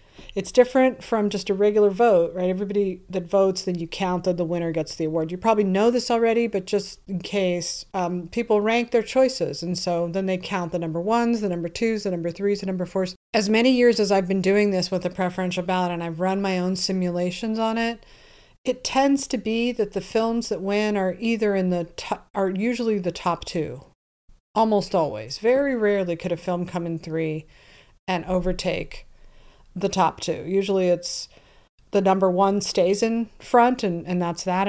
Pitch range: 180-215 Hz